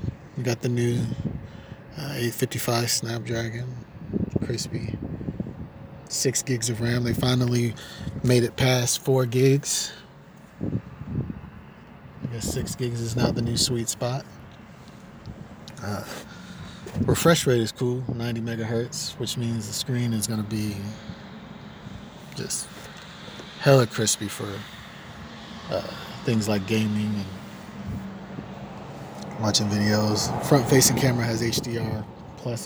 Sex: male